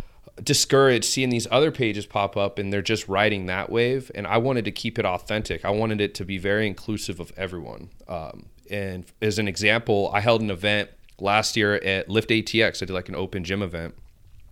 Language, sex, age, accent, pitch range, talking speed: English, male, 30-49, American, 95-115 Hz, 205 wpm